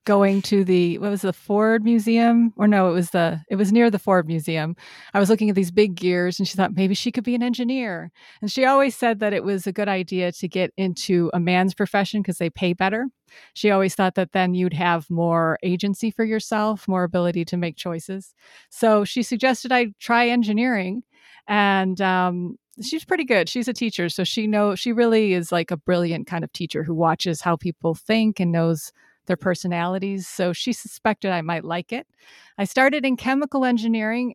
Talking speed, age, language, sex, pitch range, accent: 205 wpm, 30-49, English, female, 180-225 Hz, American